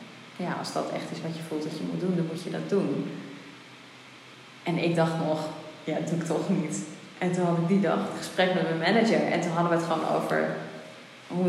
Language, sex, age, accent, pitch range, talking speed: Dutch, female, 20-39, Dutch, 170-220 Hz, 240 wpm